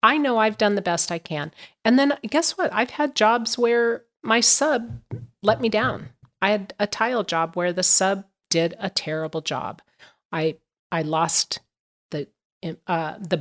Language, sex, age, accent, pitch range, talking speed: English, female, 40-59, American, 165-215 Hz, 175 wpm